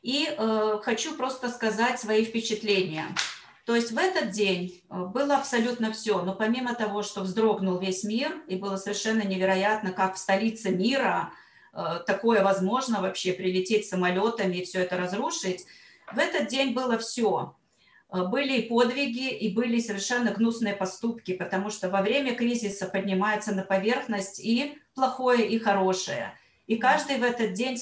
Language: Russian